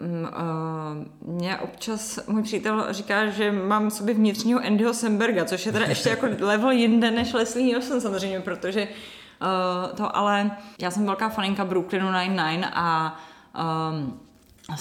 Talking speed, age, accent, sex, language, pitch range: 140 wpm, 20-39, native, female, Czech, 175-215 Hz